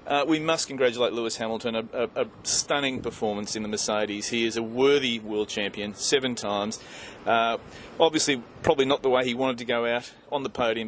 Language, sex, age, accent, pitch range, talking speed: English, male, 30-49, Australian, 110-135 Hz, 200 wpm